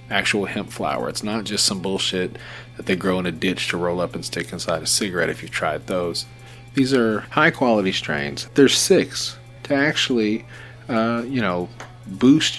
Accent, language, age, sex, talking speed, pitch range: American, English, 40-59, male, 185 wpm, 95-125 Hz